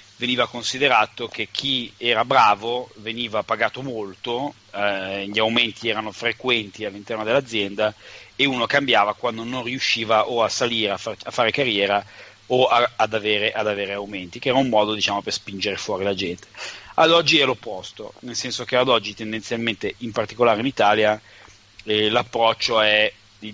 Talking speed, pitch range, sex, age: 155 wpm, 105-120 Hz, male, 30-49